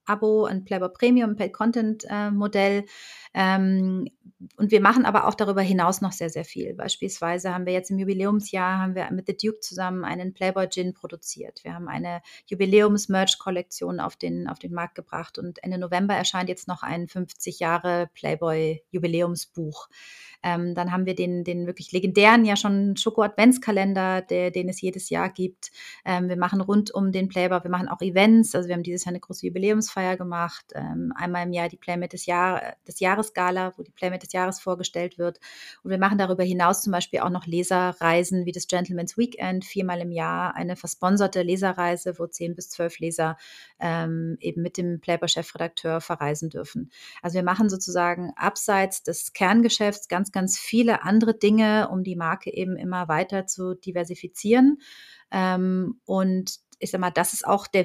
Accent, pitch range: German, 175-195 Hz